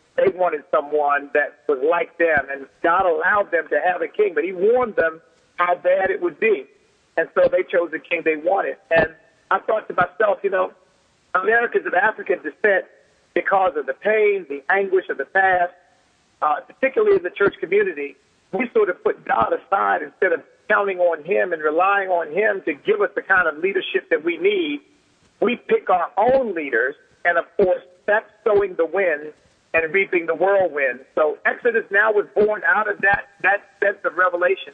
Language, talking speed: English, 190 wpm